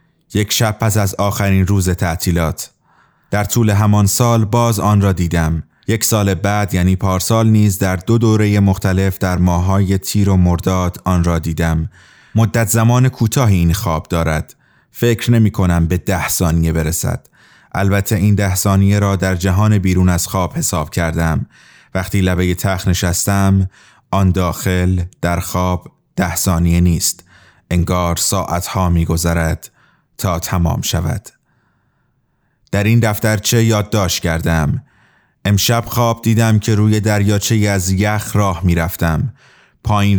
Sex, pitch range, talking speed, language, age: male, 90-105 Hz, 135 wpm, English, 30-49